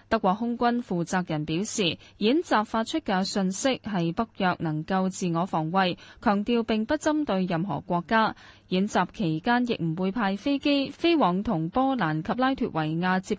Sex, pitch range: female, 170-230 Hz